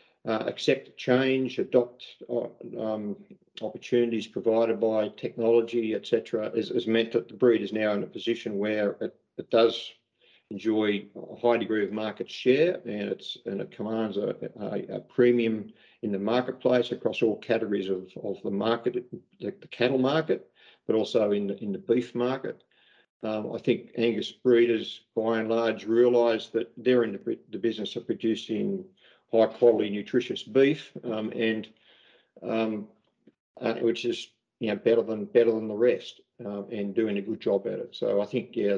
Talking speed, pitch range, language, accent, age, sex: 170 wpm, 110-120 Hz, English, Australian, 50-69, male